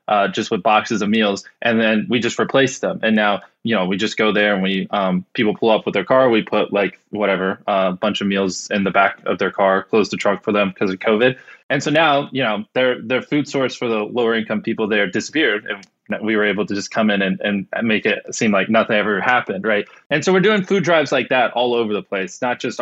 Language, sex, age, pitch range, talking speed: English, male, 20-39, 105-140 Hz, 265 wpm